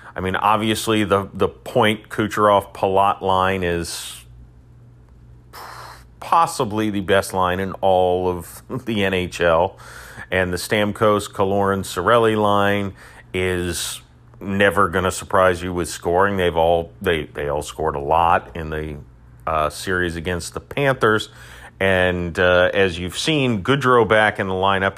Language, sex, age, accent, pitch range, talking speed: English, male, 40-59, American, 85-115 Hz, 130 wpm